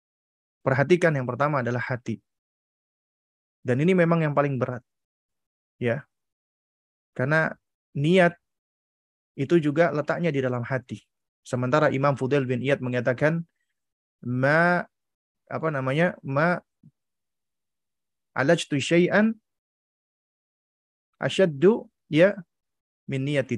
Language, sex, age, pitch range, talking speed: Indonesian, male, 20-39, 125-170 Hz, 90 wpm